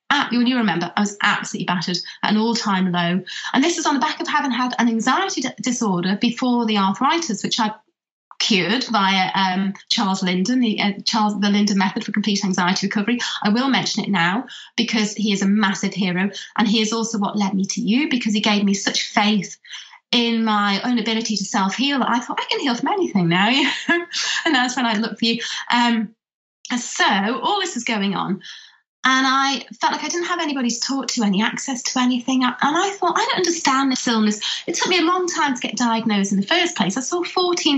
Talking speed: 220 wpm